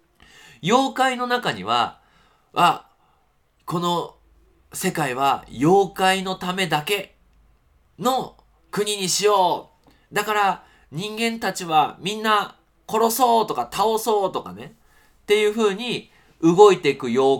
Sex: male